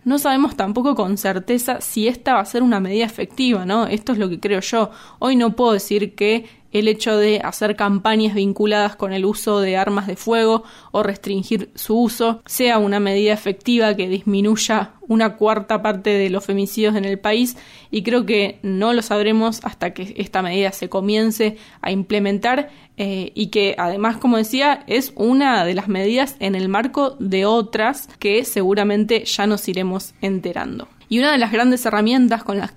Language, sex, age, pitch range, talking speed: Spanish, female, 20-39, 200-235 Hz, 185 wpm